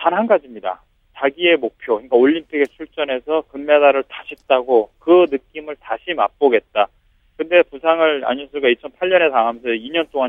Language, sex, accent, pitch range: Korean, male, native, 130-175 Hz